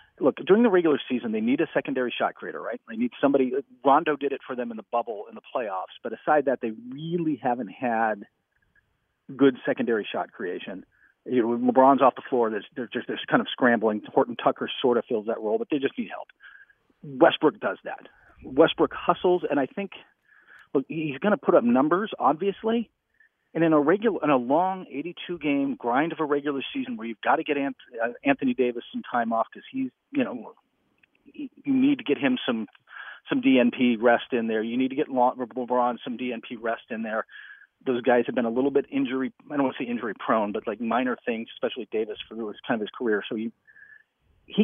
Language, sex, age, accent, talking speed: English, male, 40-59, American, 205 wpm